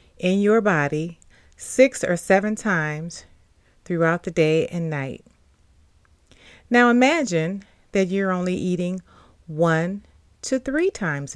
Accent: American